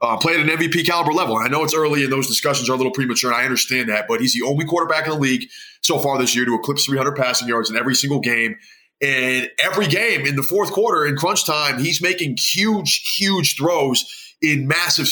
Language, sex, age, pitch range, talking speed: English, male, 20-39, 130-155 Hz, 240 wpm